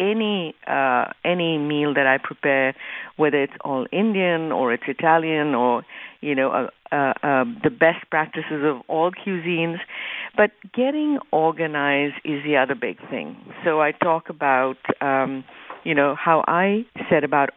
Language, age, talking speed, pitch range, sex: English, 60-79, 155 wpm, 140-180 Hz, female